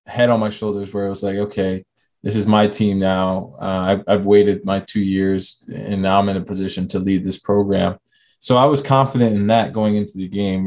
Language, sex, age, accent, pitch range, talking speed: English, male, 20-39, American, 100-110 Hz, 230 wpm